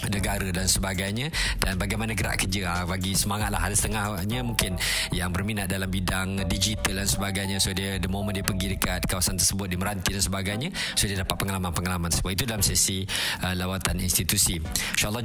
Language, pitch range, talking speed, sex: Malay, 95-110 Hz, 175 wpm, male